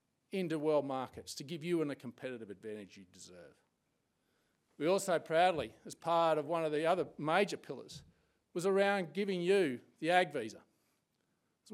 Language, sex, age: English, male, 50-69